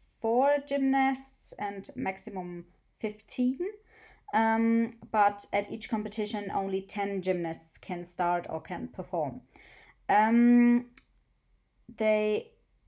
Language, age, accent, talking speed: English, 20-39, German, 95 wpm